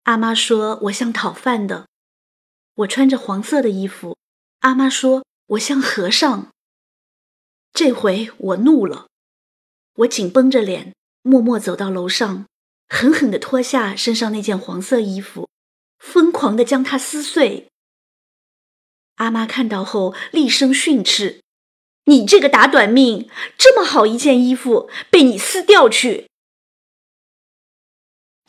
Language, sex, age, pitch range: Chinese, female, 30-49, 200-260 Hz